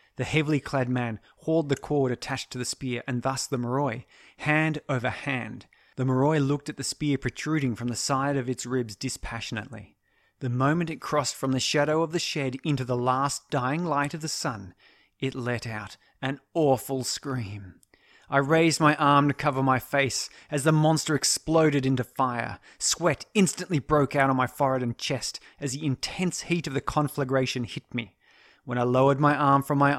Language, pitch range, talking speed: English, 120-145 Hz, 190 wpm